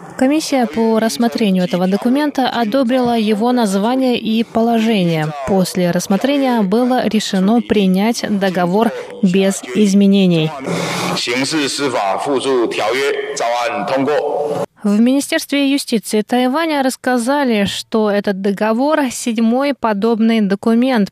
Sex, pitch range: female, 195-245 Hz